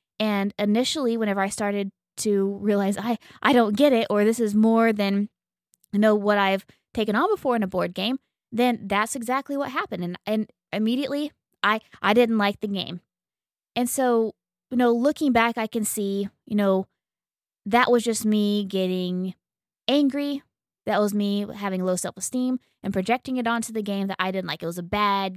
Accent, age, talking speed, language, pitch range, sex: American, 20-39, 185 wpm, English, 195-240 Hz, female